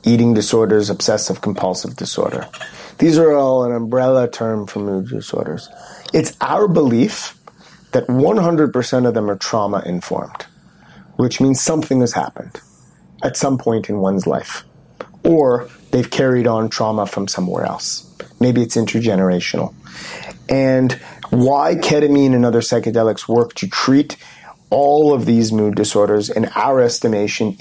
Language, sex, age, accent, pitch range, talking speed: English, male, 30-49, American, 110-135 Hz, 135 wpm